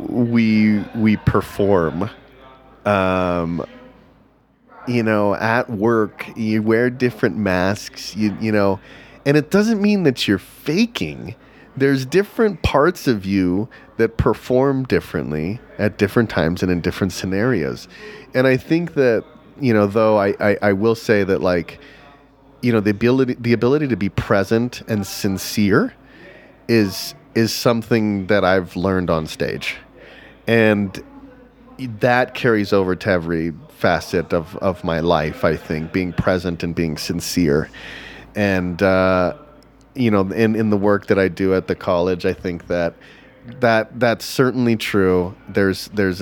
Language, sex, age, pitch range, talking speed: English, male, 30-49, 95-125 Hz, 145 wpm